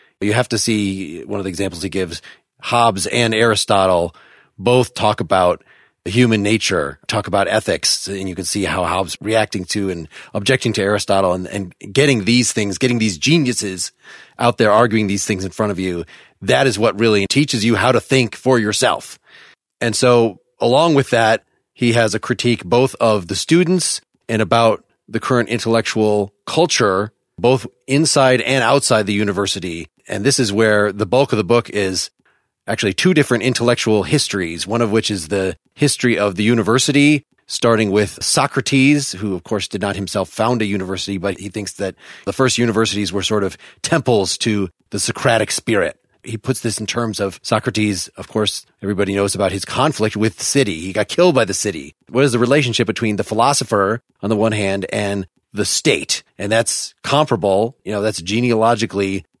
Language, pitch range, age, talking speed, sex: English, 100-120 Hz, 30-49, 185 wpm, male